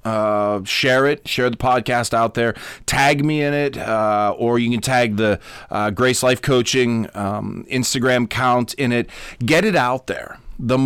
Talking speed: 175 wpm